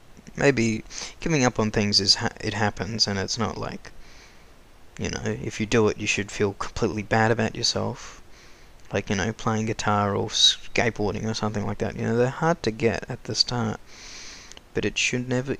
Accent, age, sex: Australian, 20-39, male